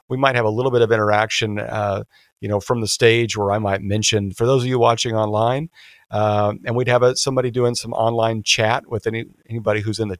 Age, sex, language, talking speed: 50-69, male, English, 235 wpm